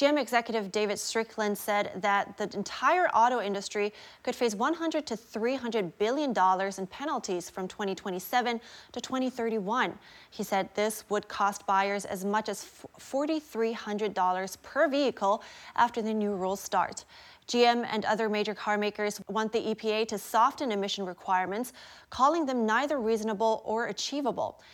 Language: English